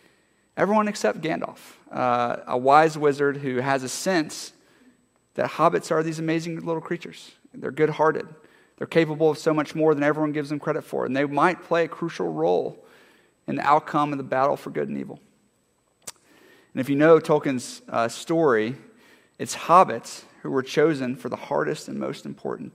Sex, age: male, 40-59